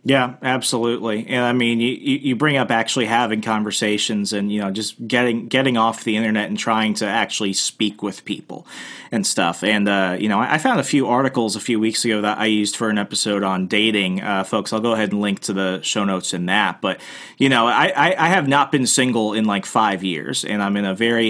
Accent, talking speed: American, 230 wpm